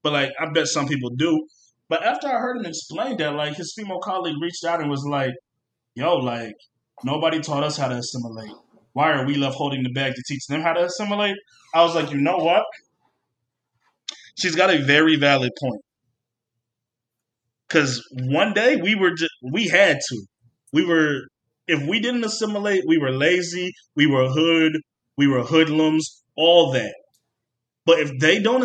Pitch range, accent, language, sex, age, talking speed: 135-200 Hz, American, English, male, 20-39, 180 wpm